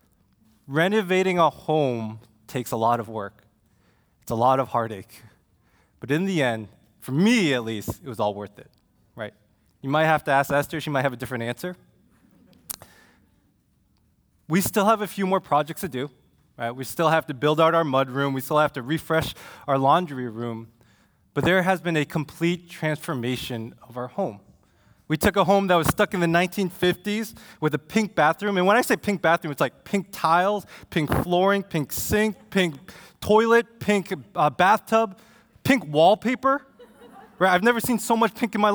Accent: American